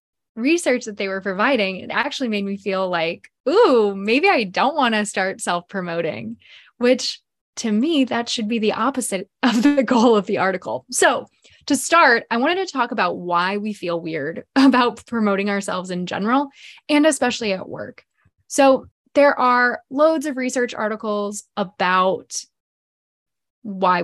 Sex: female